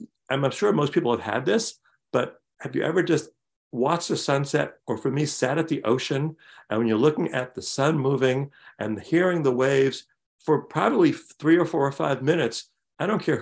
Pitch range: 115-155 Hz